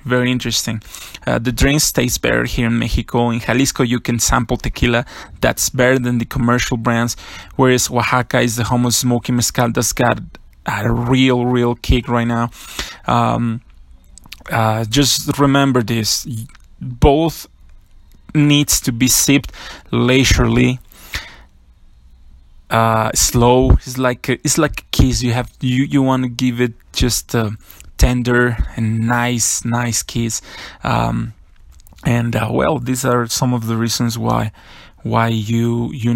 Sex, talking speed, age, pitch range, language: male, 145 wpm, 20-39, 110-130 Hz, English